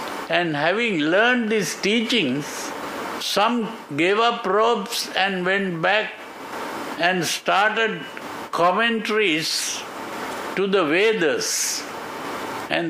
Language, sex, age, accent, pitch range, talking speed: English, male, 60-79, Indian, 175-220 Hz, 90 wpm